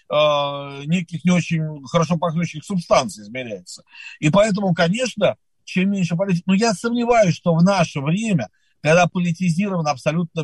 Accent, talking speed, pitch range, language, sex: native, 130 wpm, 160-195 Hz, Russian, male